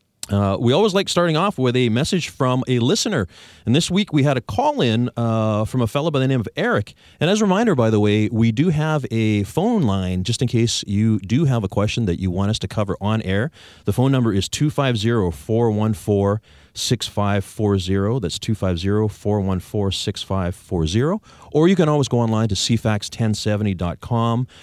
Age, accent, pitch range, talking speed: 30-49, American, 100-130 Hz, 175 wpm